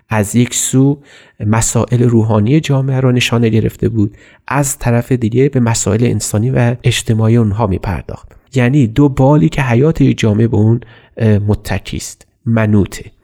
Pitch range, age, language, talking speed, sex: 110-125 Hz, 30-49, Persian, 145 wpm, male